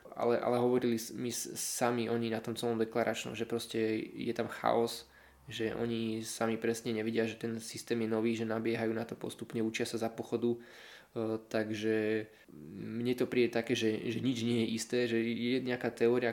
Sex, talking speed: male, 180 wpm